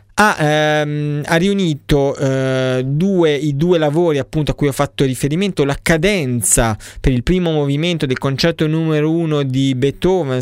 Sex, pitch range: male, 125-160 Hz